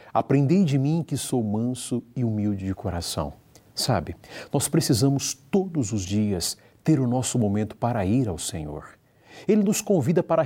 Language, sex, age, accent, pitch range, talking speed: Portuguese, male, 50-69, Brazilian, 110-150 Hz, 160 wpm